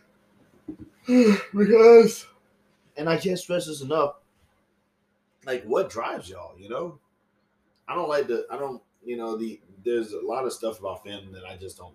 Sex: male